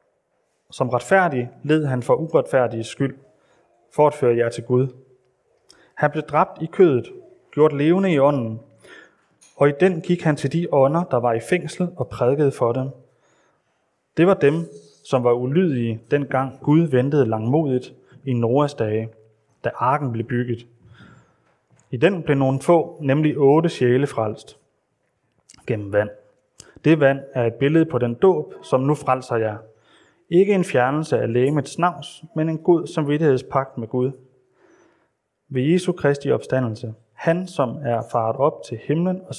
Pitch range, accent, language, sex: 120-155 Hz, native, Danish, male